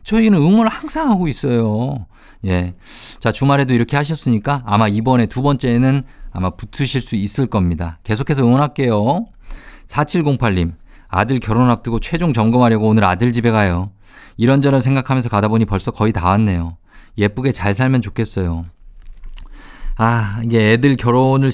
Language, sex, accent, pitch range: Korean, male, native, 105-140 Hz